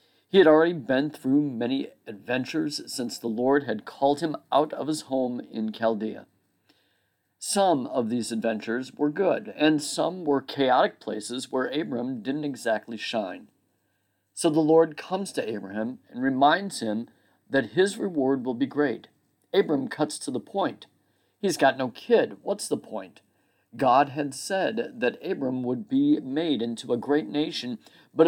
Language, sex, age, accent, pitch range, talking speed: English, male, 50-69, American, 120-170 Hz, 160 wpm